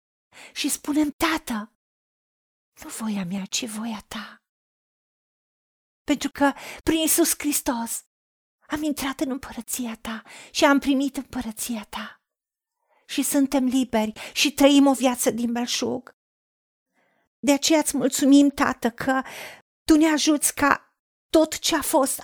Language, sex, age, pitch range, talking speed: Romanian, female, 40-59, 250-300 Hz, 125 wpm